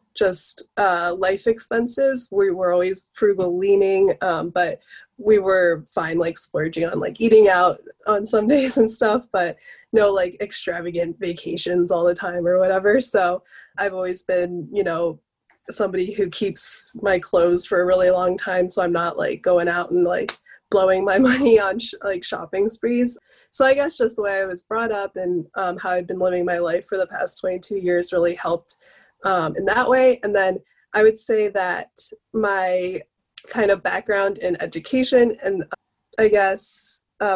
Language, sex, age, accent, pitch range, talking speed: English, female, 20-39, American, 180-225 Hz, 180 wpm